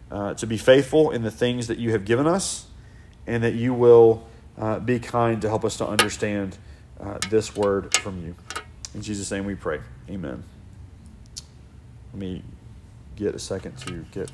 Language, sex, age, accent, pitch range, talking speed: English, male, 40-59, American, 110-145 Hz, 175 wpm